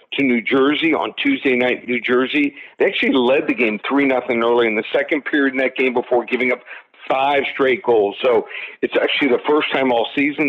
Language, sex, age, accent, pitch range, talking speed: English, male, 50-69, American, 125-145 Hz, 210 wpm